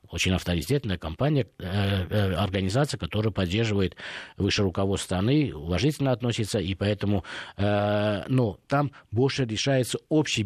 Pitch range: 100-130 Hz